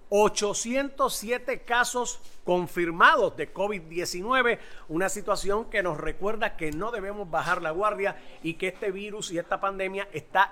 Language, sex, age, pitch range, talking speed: English, male, 40-59, 165-210 Hz, 135 wpm